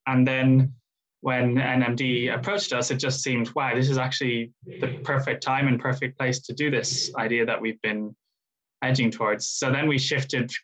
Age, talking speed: 10-29, 180 wpm